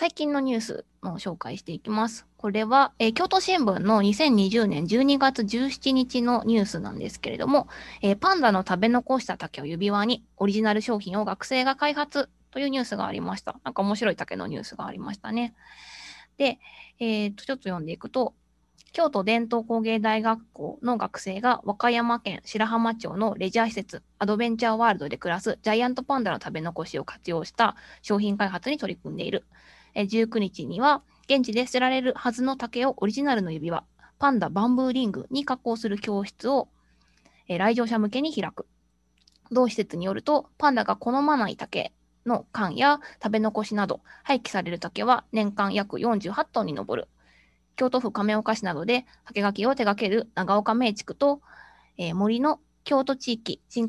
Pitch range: 200-255 Hz